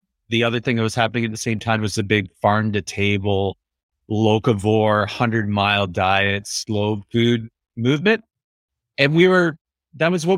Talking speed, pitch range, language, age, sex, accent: 170 wpm, 100-125 Hz, English, 30-49, male, American